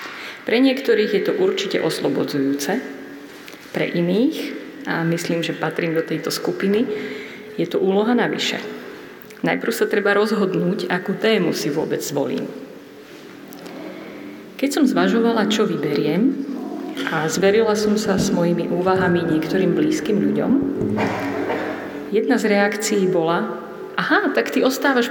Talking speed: 125 wpm